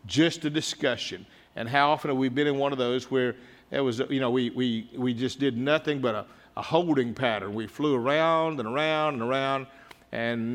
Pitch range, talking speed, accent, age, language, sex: 130-160 Hz, 210 wpm, American, 50-69, English, male